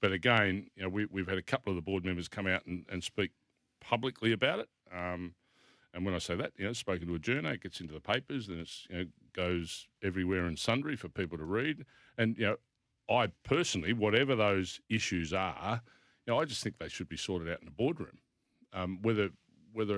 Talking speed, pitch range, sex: 225 wpm, 95-115 Hz, male